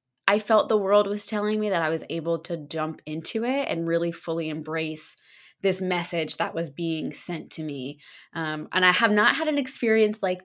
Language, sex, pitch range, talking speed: English, female, 160-195 Hz, 205 wpm